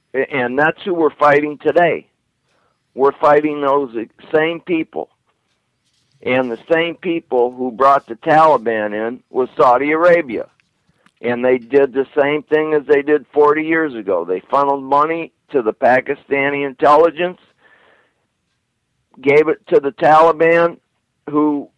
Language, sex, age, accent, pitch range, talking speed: English, male, 50-69, American, 130-155 Hz, 130 wpm